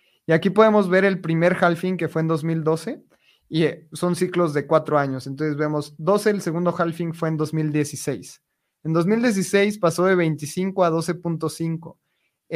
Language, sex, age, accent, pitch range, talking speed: Spanish, male, 30-49, Mexican, 155-190 Hz, 160 wpm